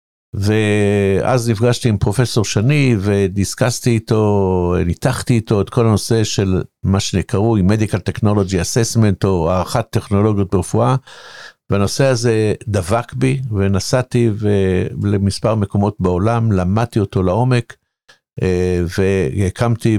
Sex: male